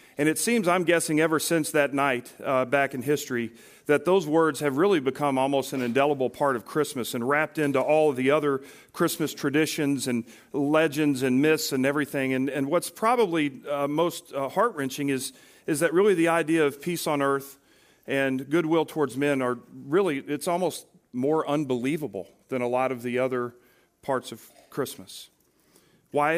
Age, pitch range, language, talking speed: 40-59, 125-150 Hz, English, 175 wpm